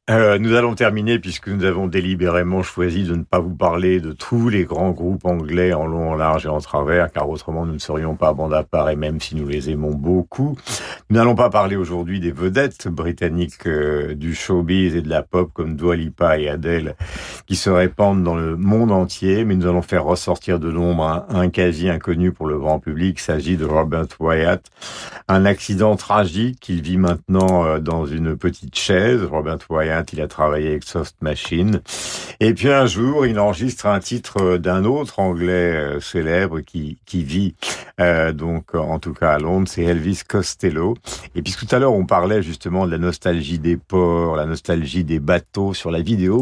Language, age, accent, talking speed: French, 50-69, French, 200 wpm